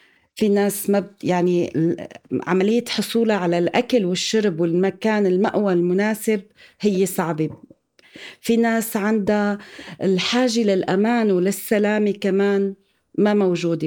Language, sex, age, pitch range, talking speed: Arabic, female, 40-59, 185-225 Hz, 105 wpm